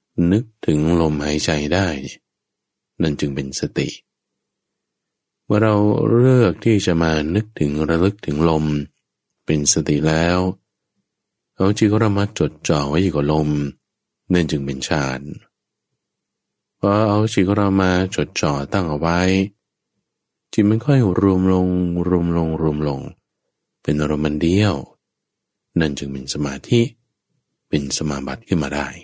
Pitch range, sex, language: 75-100 Hz, male, English